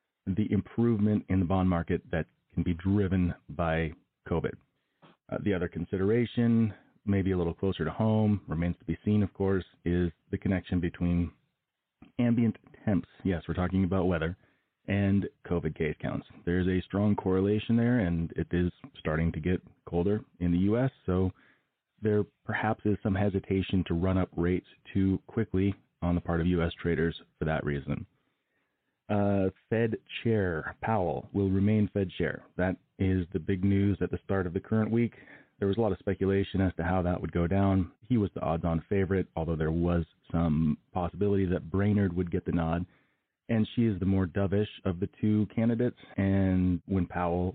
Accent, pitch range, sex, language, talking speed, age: American, 85-100 Hz, male, English, 180 wpm, 30-49